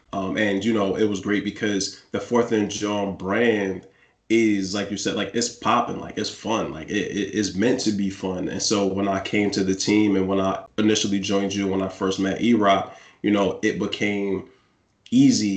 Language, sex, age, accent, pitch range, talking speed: English, male, 20-39, American, 95-105 Hz, 210 wpm